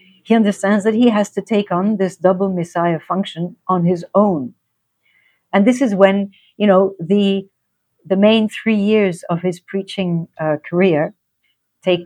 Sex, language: female, English